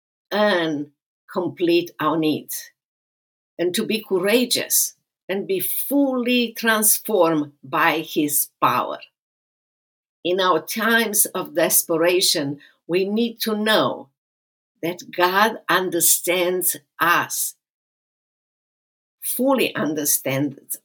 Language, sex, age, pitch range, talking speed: English, female, 50-69, 160-215 Hz, 85 wpm